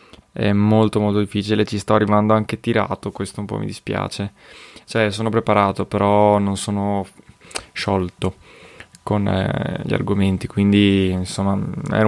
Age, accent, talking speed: 20-39, native, 140 wpm